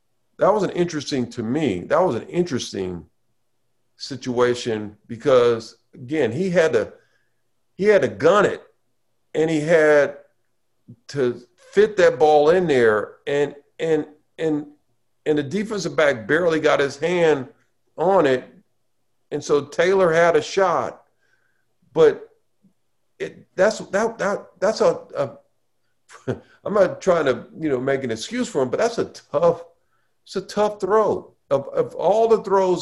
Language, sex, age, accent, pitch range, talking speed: English, male, 50-69, American, 120-165 Hz, 150 wpm